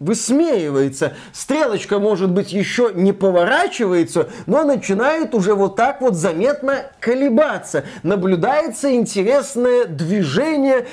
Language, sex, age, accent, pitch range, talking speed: Russian, male, 20-39, native, 160-225 Hz, 100 wpm